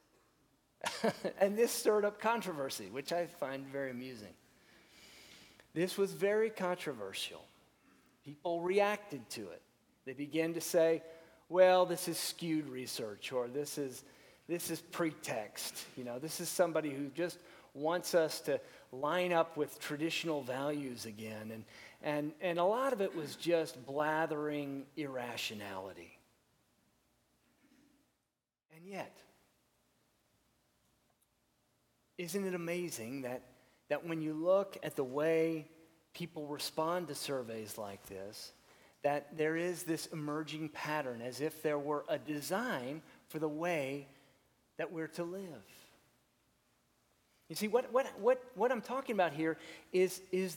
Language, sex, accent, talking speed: English, male, American, 130 wpm